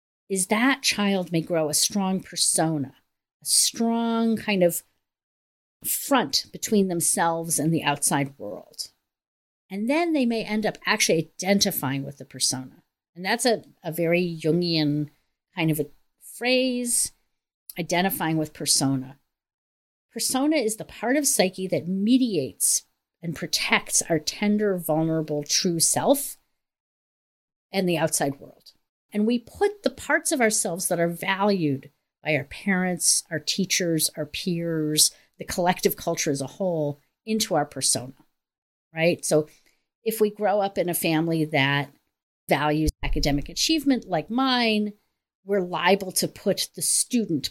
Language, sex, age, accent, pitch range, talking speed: English, female, 50-69, American, 150-210 Hz, 140 wpm